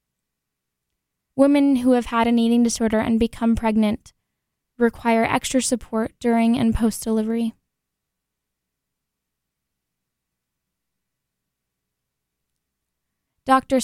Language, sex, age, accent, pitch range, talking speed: English, female, 10-29, American, 215-235 Hz, 75 wpm